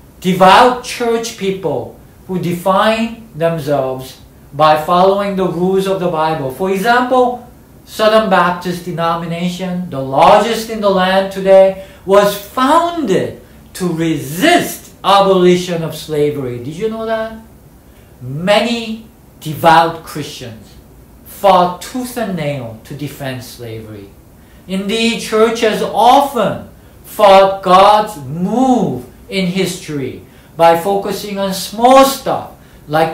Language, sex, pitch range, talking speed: English, male, 155-220 Hz, 105 wpm